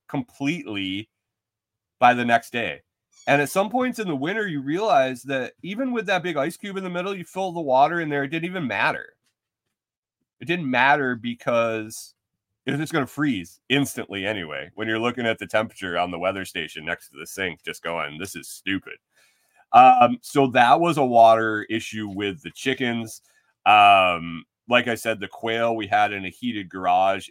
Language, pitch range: English, 95-135 Hz